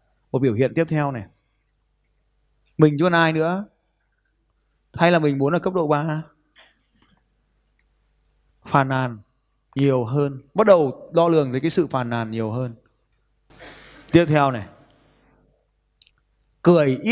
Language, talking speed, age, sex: Vietnamese, 135 wpm, 20-39, male